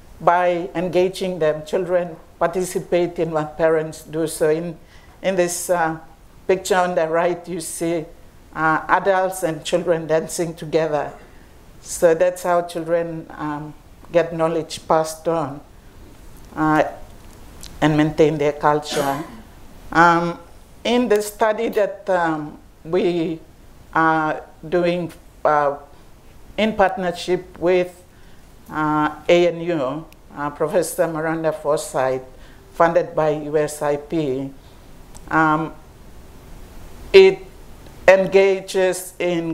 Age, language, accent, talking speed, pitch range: 50-69, English, Nigerian, 100 wpm, 155-180 Hz